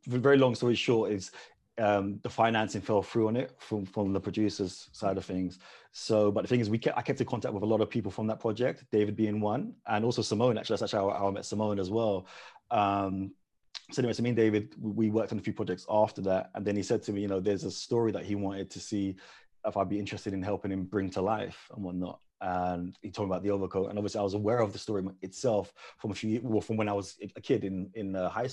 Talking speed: 265 wpm